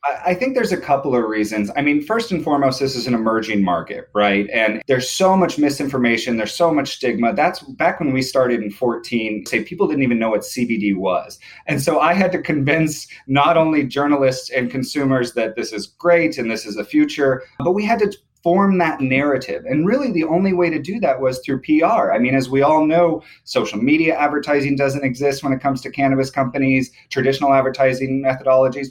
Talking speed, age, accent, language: 210 wpm, 30-49, American, English